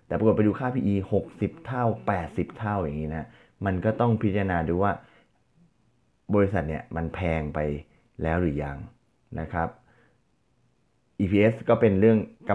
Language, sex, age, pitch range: Thai, male, 20-39, 80-115 Hz